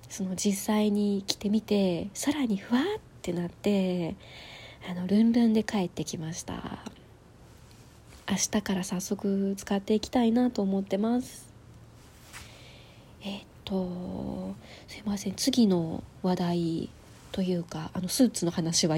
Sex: female